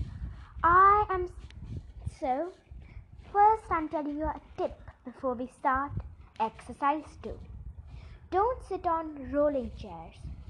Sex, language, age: female, English, 20-39